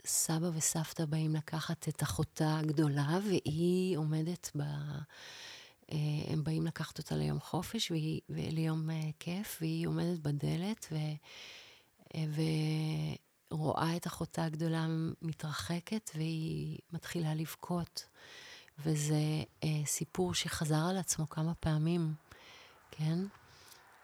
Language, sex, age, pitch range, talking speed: Hebrew, female, 30-49, 150-185 Hz, 95 wpm